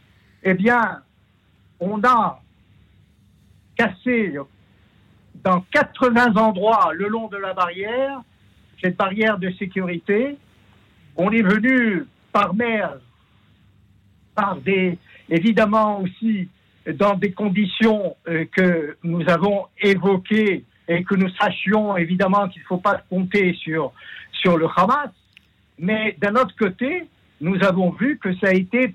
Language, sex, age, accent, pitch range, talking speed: French, male, 60-79, French, 155-210 Hz, 120 wpm